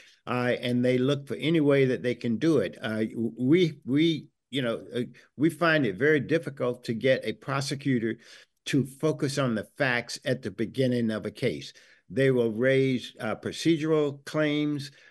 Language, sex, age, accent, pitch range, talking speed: English, male, 60-79, American, 115-140 Hz, 175 wpm